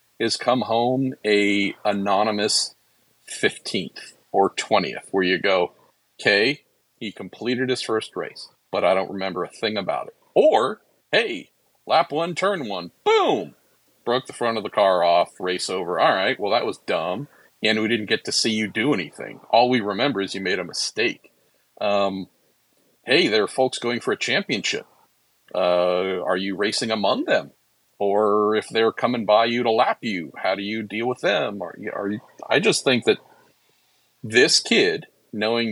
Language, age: English, 50-69